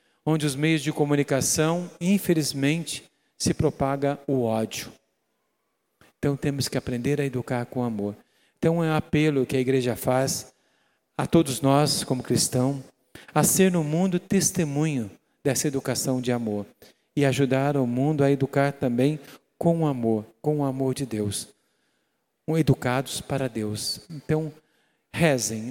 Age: 50-69